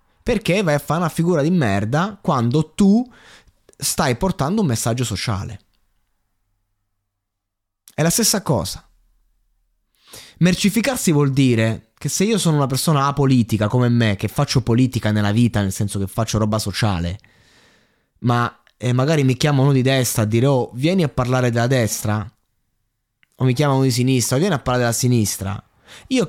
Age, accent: 20-39, native